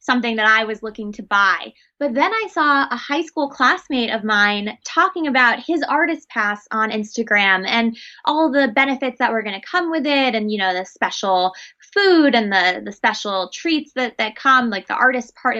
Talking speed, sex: 205 wpm, female